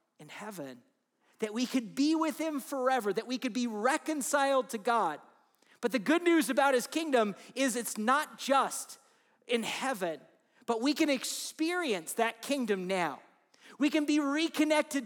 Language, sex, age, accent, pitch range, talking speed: English, male, 40-59, American, 200-280 Hz, 160 wpm